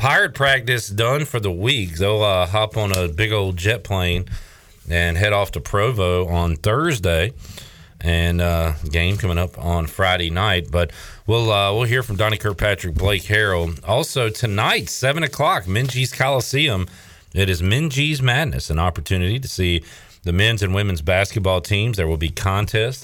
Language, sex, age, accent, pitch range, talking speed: English, male, 40-59, American, 85-110 Hz, 165 wpm